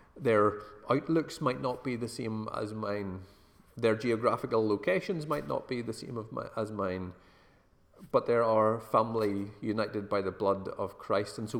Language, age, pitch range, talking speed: English, 30-49, 95-115 Hz, 170 wpm